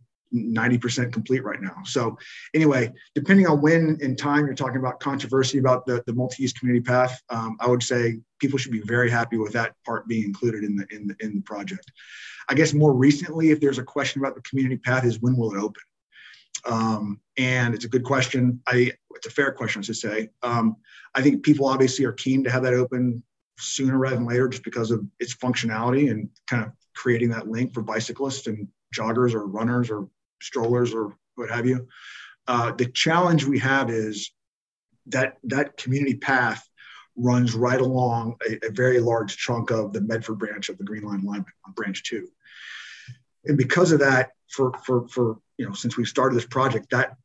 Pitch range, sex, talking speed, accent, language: 115-130 Hz, male, 195 wpm, American, English